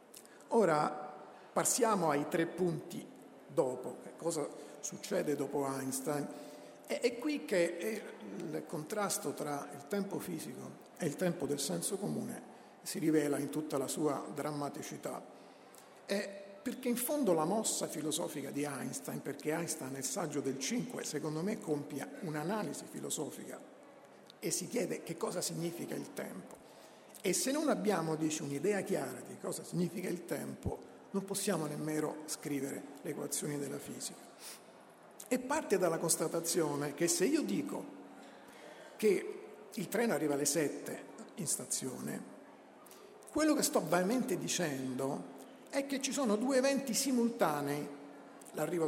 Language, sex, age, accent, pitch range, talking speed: Italian, male, 50-69, native, 150-215 Hz, 135 wpm